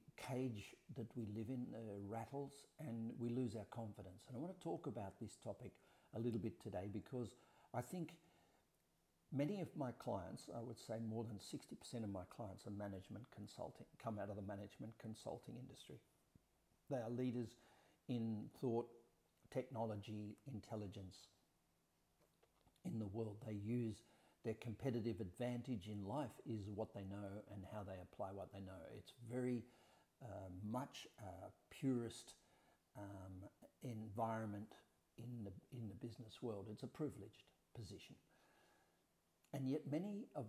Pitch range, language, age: 105-125 Hz, English, 50-69